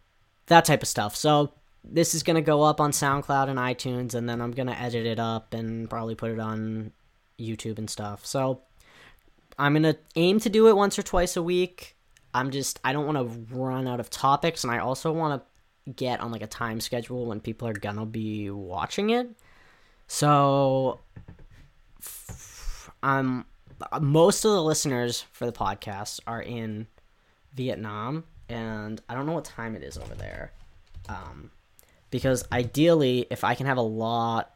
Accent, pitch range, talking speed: American, 110-135 Hz, 175 wpm